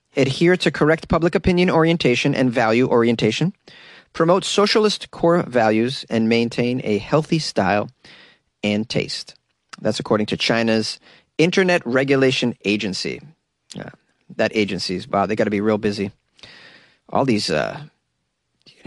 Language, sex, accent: English, male, American